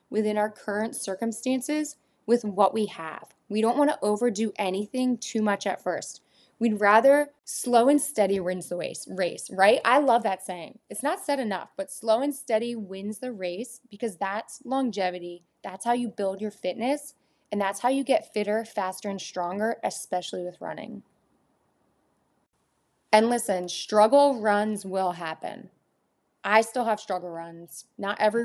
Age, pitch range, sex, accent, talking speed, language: 20-39, 195-235 Hz, female, American, 160 wpm, English